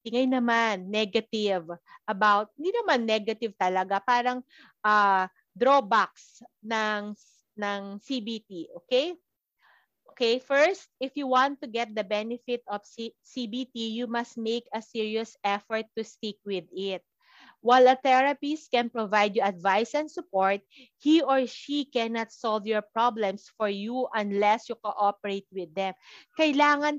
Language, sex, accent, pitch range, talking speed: Filipino, female, native, 205-255 Hz, 135 wpm